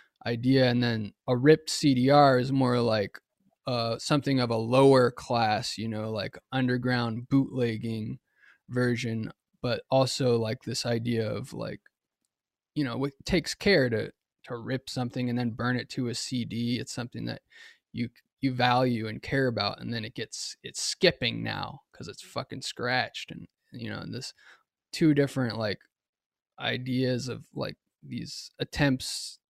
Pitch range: 120-135 Hz